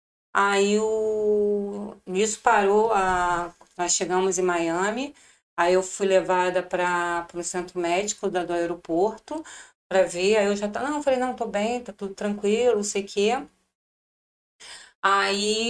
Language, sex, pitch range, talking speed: Portuguese, female, 195-280 Hz, 145 wpm